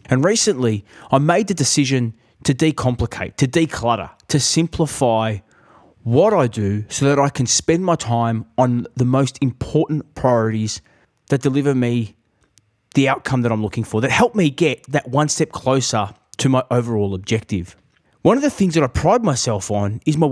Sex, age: male, 20-39